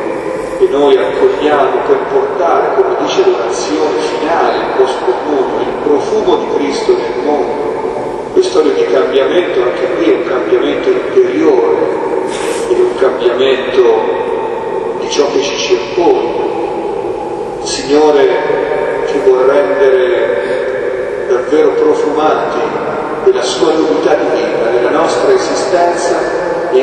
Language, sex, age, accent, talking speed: Italian, male, 40-59, native, 110 wpm